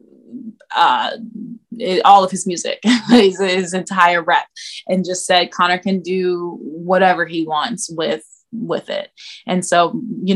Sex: female